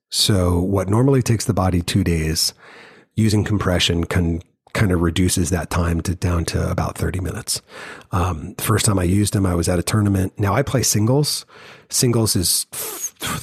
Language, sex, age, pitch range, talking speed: English, male, 40-59, 90-110 Hz, 185 wpm